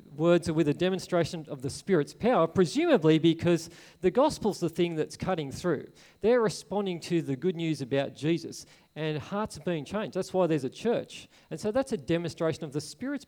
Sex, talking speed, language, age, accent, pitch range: male, 200 wpm, English, 40-59, Australian, 140-175 Hz